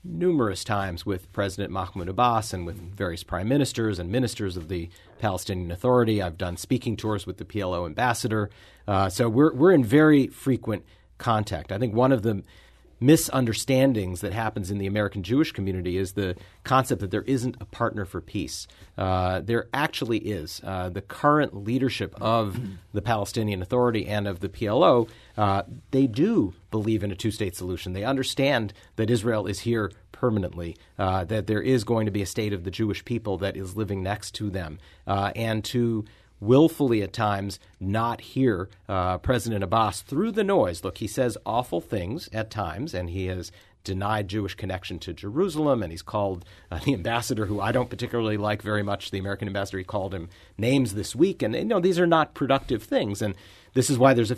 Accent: American